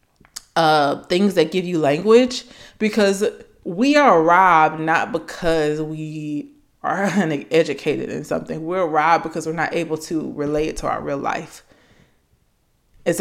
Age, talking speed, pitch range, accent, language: 20-39, 140 wpm, 160-195 Hz, American, English